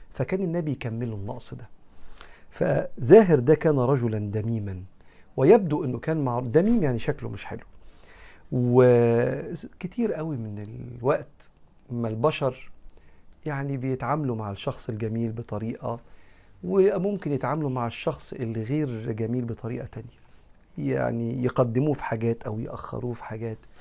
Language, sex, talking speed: Arabic, male, 120 wpm